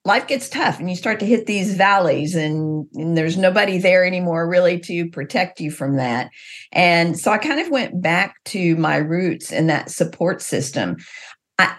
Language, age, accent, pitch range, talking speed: English, 50-69, American, 165-205 Hz, 190 wpm